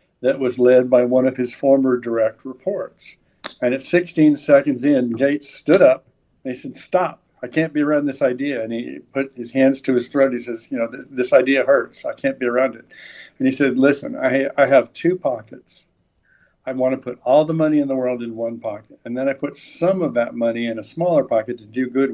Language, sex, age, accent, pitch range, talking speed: English, male, 50-69, American, 120-140 Hz, 230 wpm